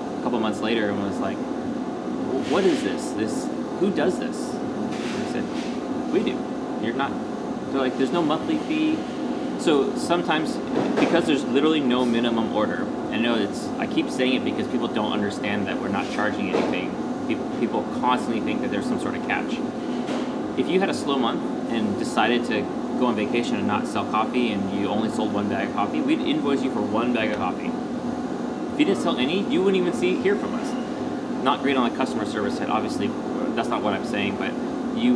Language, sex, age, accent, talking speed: English, male, 20-39, American, 205 wpm